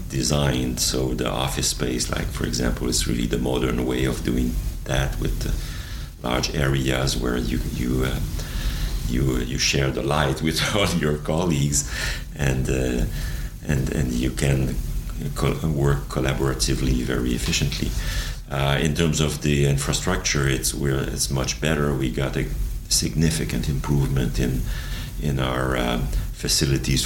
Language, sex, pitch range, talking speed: English, male, 65-75 Hz, 140 wpm